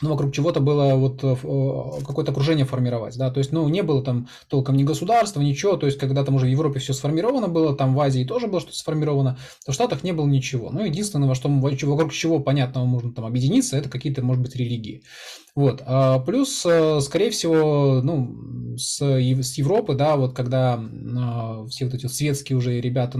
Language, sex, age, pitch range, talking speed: Russian, male, 20-39, 130-150 Hz, 195 wpm